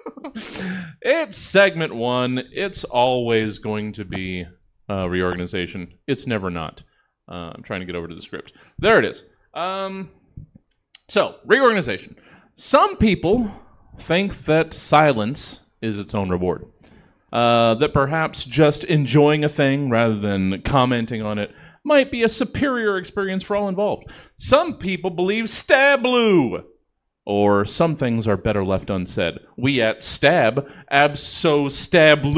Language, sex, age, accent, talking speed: English, male, 30-49, American, 135 wpm